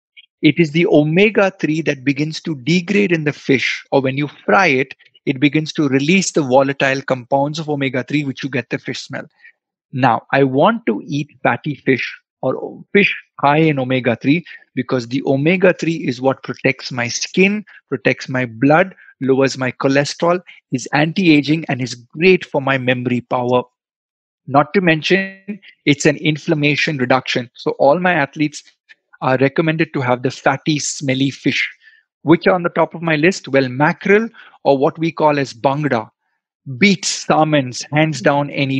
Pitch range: 135-170 Hz